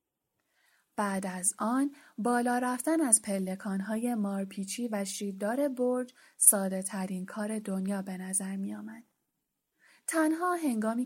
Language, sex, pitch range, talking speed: Persian, female, 195-260 Hz, 105 wpm